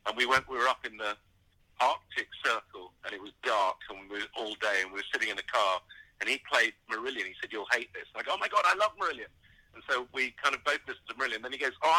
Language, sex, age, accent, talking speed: English, male, 50-69, British, 285 wpm